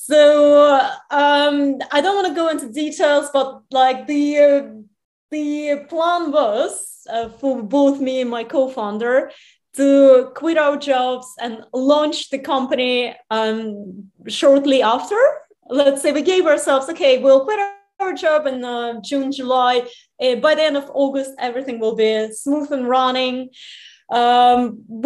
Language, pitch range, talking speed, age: English, 245-305 Hz, 145 wpm, 30-49